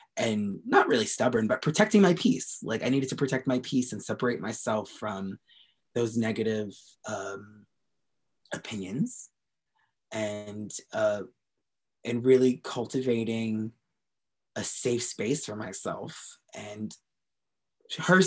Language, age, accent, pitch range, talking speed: English, 20-39, American, 110-140 Hz, 115 wpm